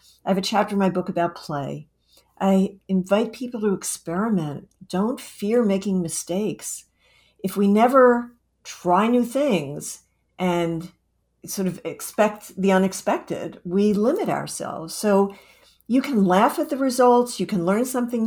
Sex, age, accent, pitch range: female, 50-69, American, 170-225 Hz